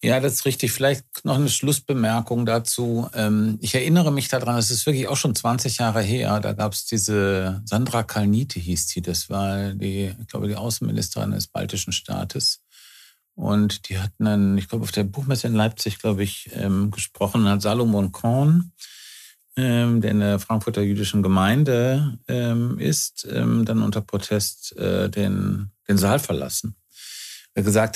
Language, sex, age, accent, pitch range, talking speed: German, male, 50-69, German, 95-115 Hz, 155 wpm